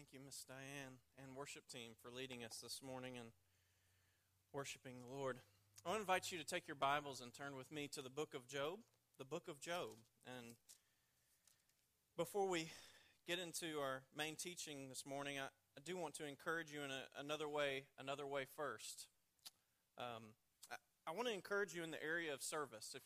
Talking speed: 195 wpm